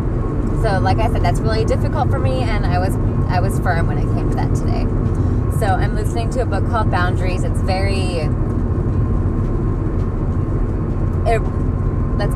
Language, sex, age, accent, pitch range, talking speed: English, female, 20-39, American, 110-120 Hz, 150 wpm